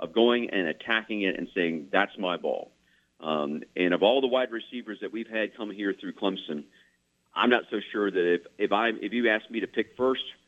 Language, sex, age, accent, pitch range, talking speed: English, male, 50-69, American, 90-115 Hz, 225 wpm